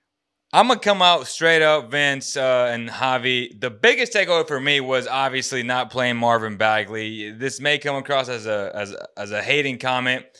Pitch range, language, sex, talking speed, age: 105-130 Hz, English, male, 195 wpm, 20-39